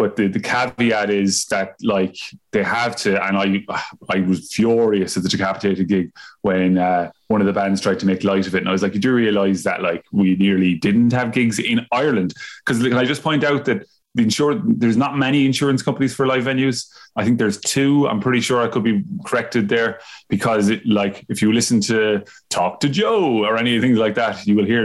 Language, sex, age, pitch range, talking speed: English, male, 20-39, 105-125 Hz, 225 wpm